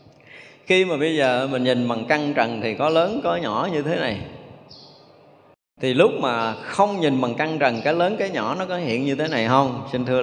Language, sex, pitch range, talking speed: Vietnamese, male, 125-175 Hz, 225 wpm